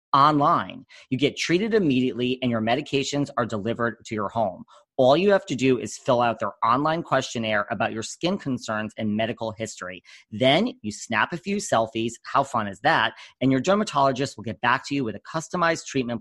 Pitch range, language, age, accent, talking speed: 110-140 Hz, English, 40-59, American, 195 wpm